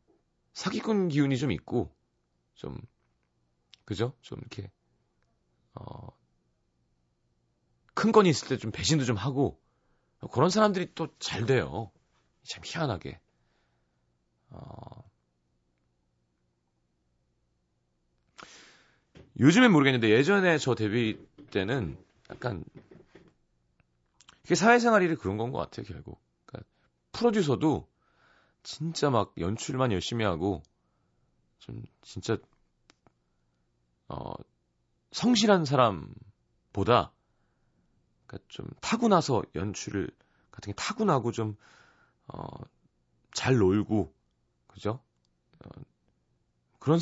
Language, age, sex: Korean, 40-59, male